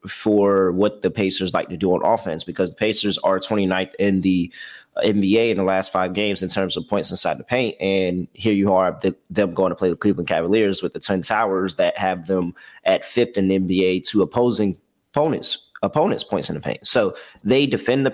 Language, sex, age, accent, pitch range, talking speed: English, male, 30-49, American, 95-115 Hz, 215 wpm